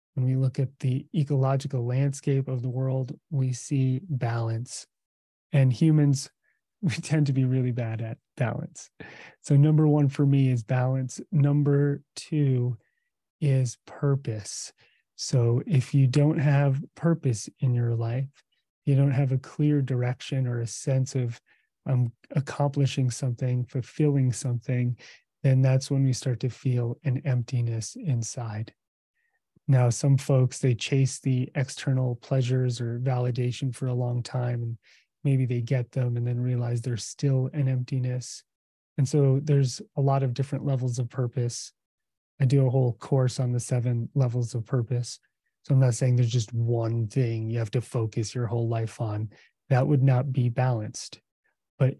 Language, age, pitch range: English, 30-49, 120-140 Hz